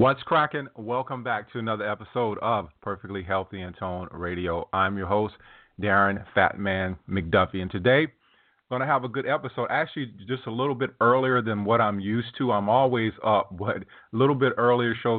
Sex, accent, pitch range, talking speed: male, American, 90-110 Hz, 185 wpm